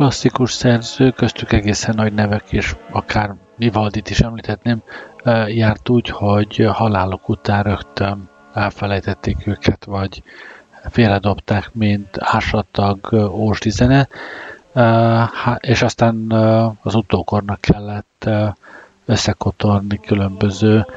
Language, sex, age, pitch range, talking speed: Hungarian, male, 50-69, 100-115 Hz, 90 wpm